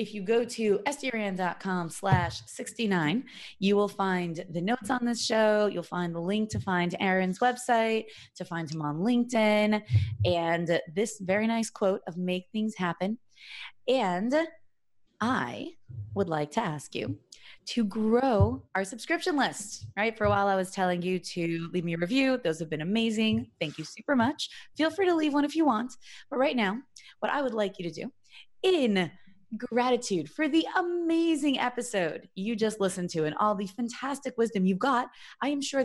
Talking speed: 180 wpm